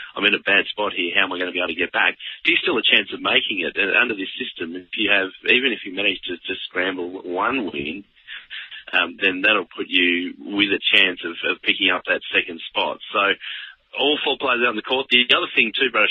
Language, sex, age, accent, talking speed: English, male, 30-49, Australian, 250 wpm